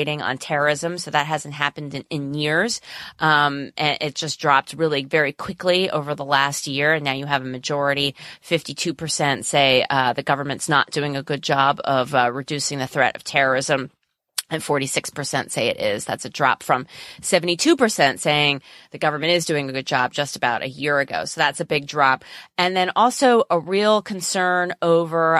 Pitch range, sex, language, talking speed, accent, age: 140-170 Hz, female, English, 185 wpm, American, 30-49